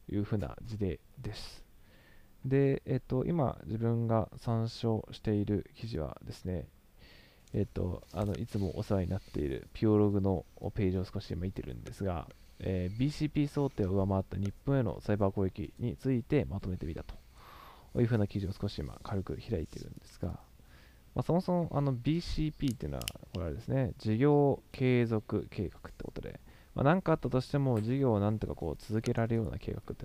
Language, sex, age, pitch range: Japanese, male, 20-39, 100-135 Hz